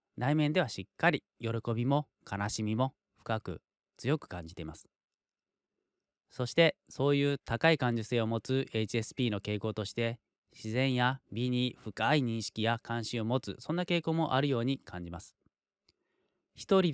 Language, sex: Japanese, male